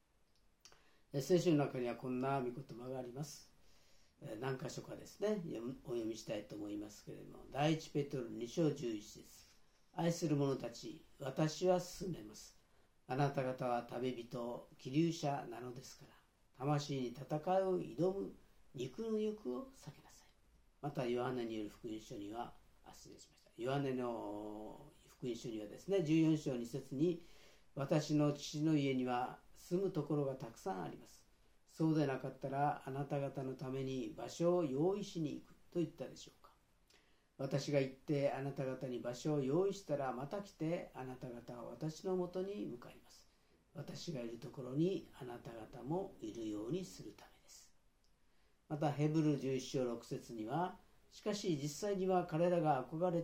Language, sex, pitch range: Japanese, female, 130-170 Hz